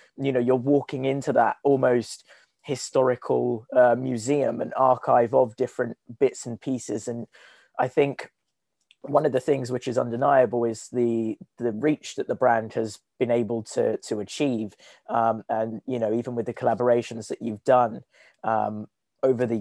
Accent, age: British, 20-39